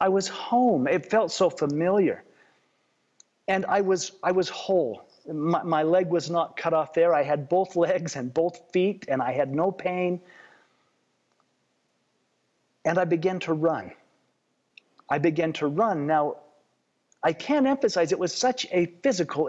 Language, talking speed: English, 155 wpm